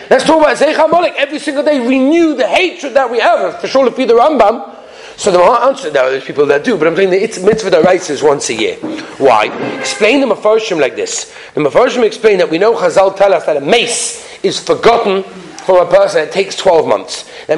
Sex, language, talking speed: male, English, 230 wpm